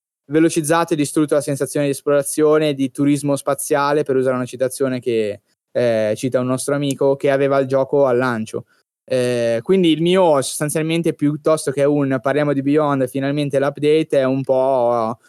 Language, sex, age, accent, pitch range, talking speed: Italian, male, 20-39, native, 125-150 Hz, 165 wpm